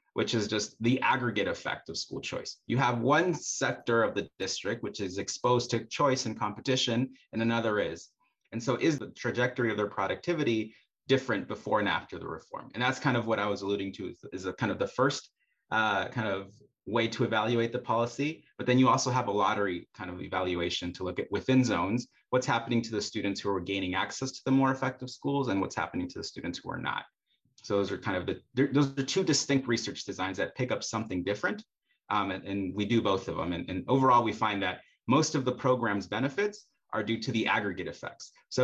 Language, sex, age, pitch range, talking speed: English, male, 30-49, 100-130 Hz, 225 wpm